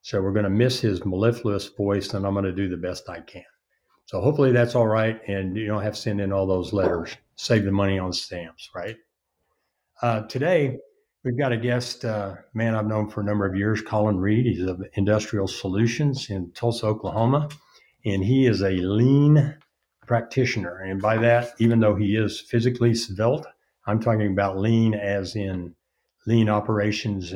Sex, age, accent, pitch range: male, 60-79, American, 95-115 Hz